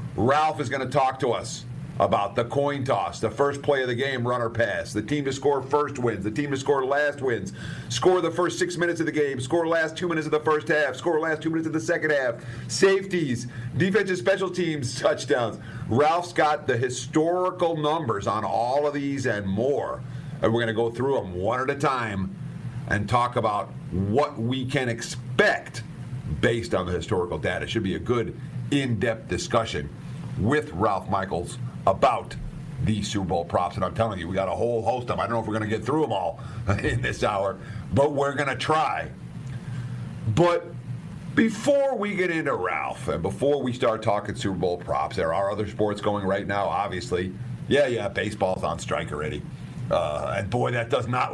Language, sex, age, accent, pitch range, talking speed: English, male, 50-69, American, 115-150 Hz, 200 wpm